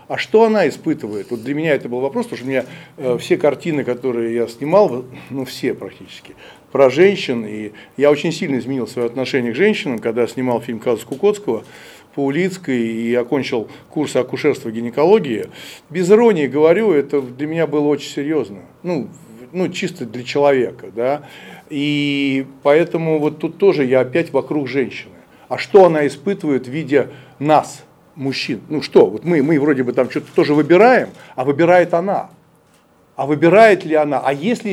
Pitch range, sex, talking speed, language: 130-165 Hz, male, 170 wpm, Russian